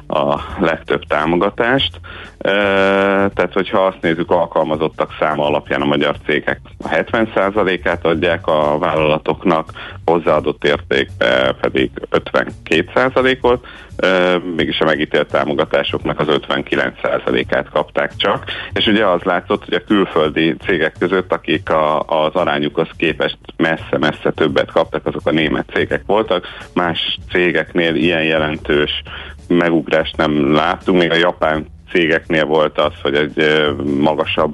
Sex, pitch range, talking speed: male, 80-100 Hz, 120 wpm